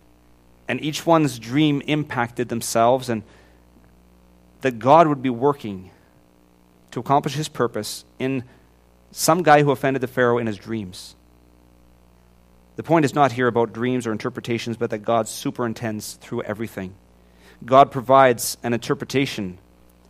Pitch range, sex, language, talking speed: 95-130 Hz, male, English, 135 wpm